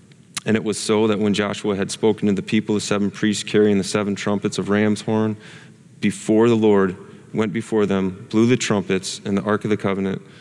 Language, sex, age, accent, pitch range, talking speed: English, male, 30-49, American, 105-140 Hz, 215 wpm